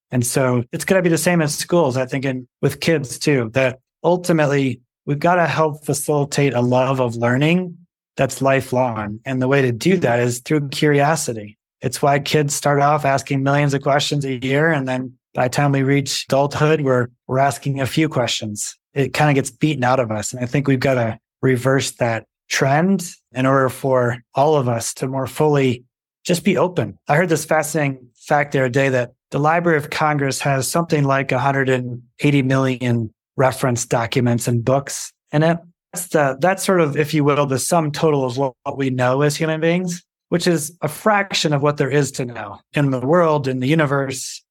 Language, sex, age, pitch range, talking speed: English, male, 30-49, 130-155 Hz, 200 wpm